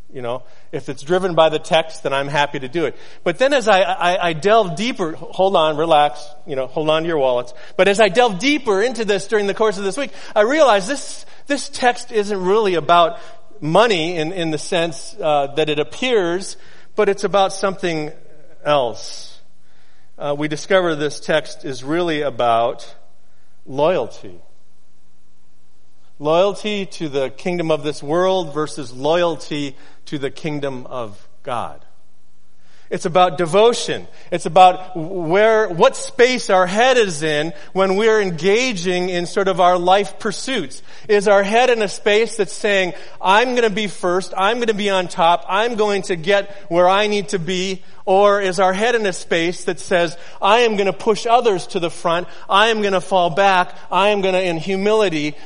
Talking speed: 185 wpm